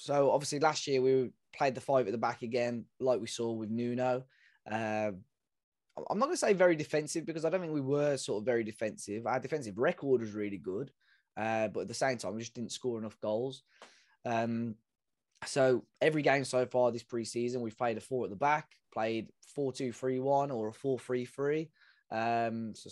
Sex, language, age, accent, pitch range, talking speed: male, English, 10-29, British, 110-135 Hz, 205 wpm